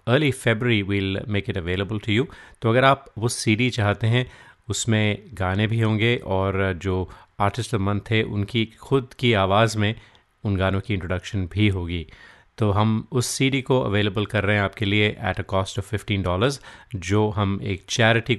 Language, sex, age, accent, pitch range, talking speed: Hindi, male, 30-49, native, 95-115 Hz, 195 wpm